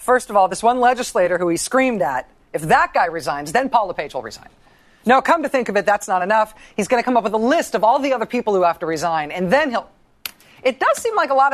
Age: 40-59